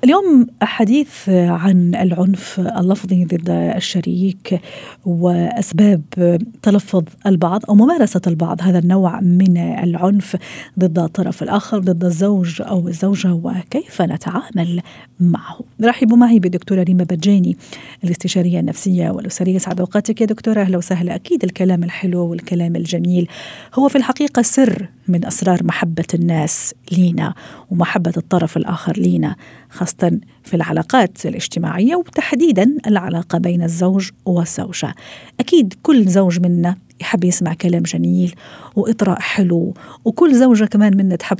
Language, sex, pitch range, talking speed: Arabic, female, 175-215 Hz, 120 wpm